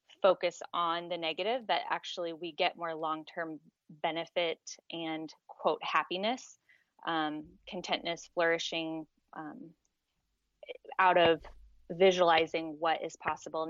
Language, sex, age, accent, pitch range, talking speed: English, female, 20-39, American, 160-190 Hz, 105 wpm